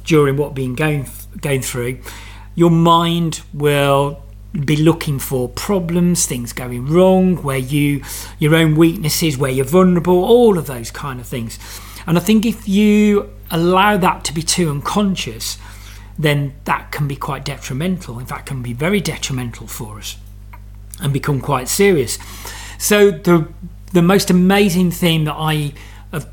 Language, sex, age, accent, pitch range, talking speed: English, male, 40-59, British, 120-170 Hz, 155 wpm